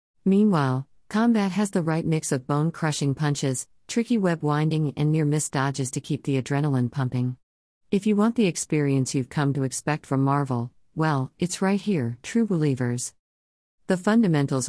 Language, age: English, 50-69